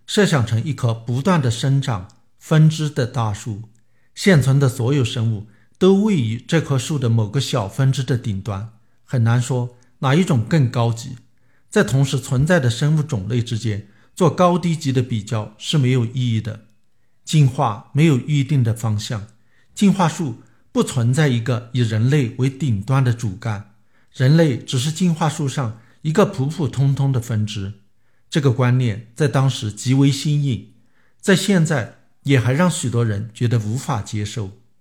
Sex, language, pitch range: male, Chinese, 115-145 Hz